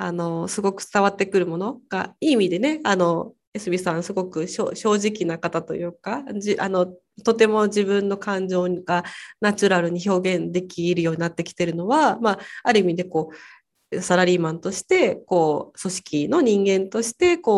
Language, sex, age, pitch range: Japanese, female, 20-39, 180-230 Hz